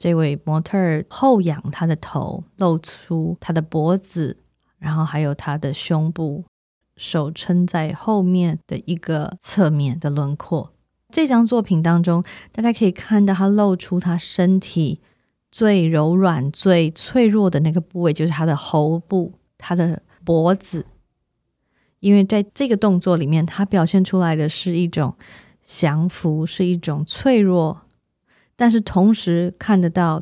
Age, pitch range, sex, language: 20-39, 160-190 Hz, female, Chinese